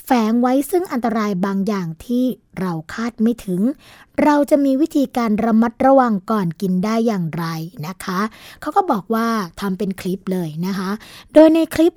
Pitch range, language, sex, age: 195-250 Hz, Thai, female, 20-39